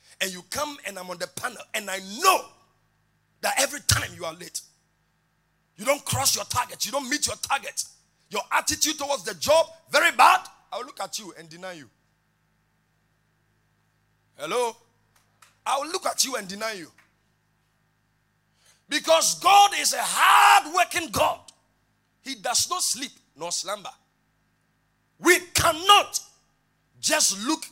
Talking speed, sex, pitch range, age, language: 145 wpm, male, 180-305 Hz, 50-69, English